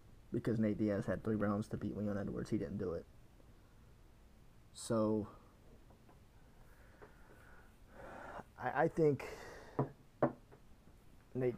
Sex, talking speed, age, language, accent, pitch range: male, 100 wpm, 20-39, English, American, 100-115 Hz